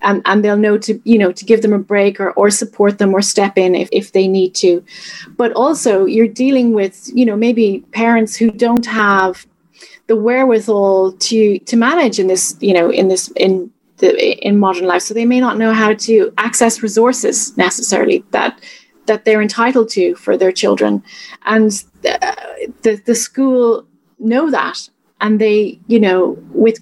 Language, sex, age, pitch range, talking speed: English, female, 30-49, 190-235 Hz, 185 wpm